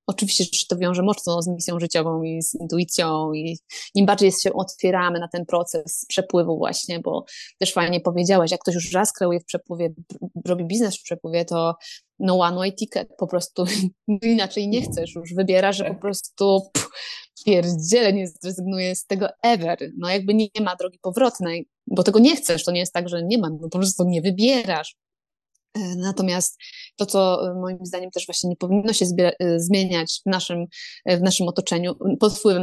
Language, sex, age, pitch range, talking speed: Polish, female, 20-39, 175-195 Hz, 185 wpm